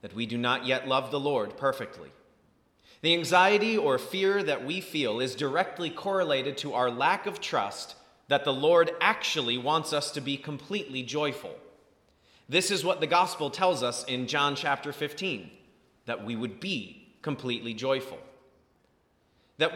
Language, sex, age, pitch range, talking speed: English, male, 30-49, 125-185 Hz, 160 wpm